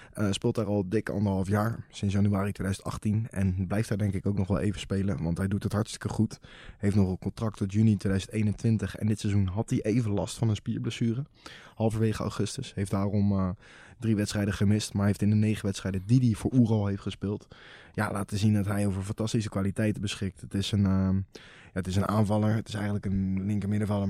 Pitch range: 100-110 Hz